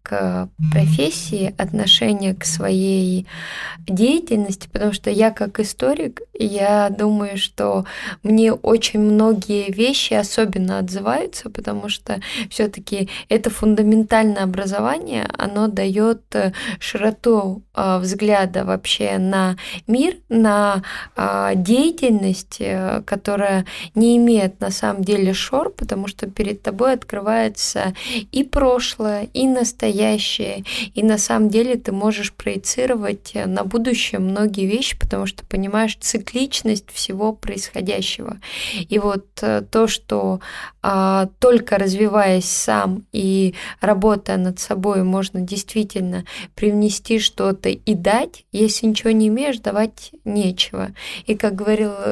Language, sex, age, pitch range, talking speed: Russian, female, 20-39, 190-220 Hz, 110 wpm